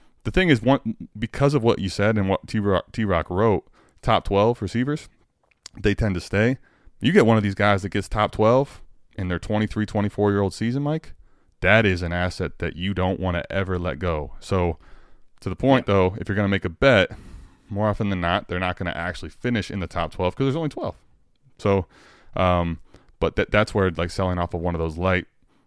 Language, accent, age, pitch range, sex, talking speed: English, American, 20-39, 85-110 Hz, male, 215 wpm